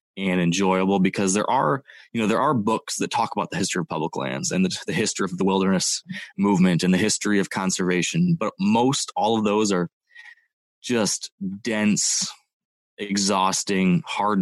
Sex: male